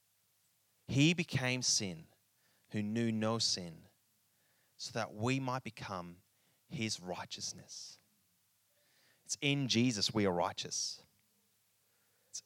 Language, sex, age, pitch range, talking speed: English, male, 30-49, 105-130 Hz, 100 wpm